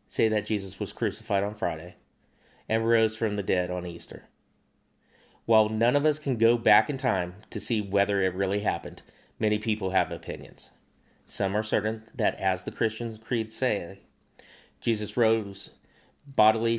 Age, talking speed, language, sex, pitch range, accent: 30-49, 160 wpm, English, male, 95-115 Hz, American